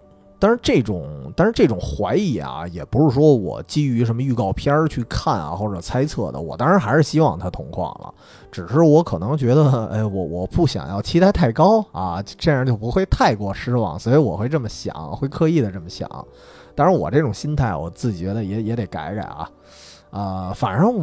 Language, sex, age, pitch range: Chinese, male, 30-49, 100-150 Hz